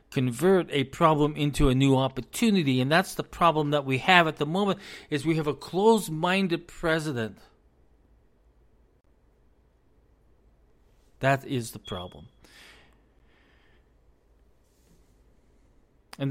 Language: English